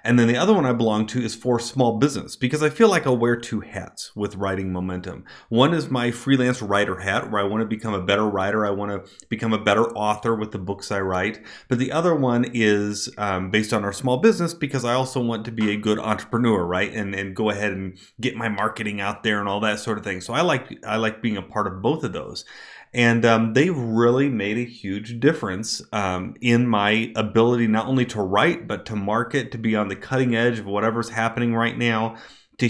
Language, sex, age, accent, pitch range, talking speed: English, male, 30-49, American, 105-120 Hz, 240 wpm